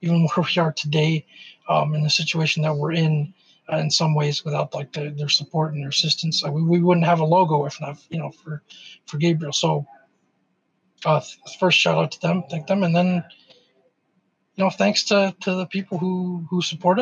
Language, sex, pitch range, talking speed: English, male, 155-185 Hz, 210 wpm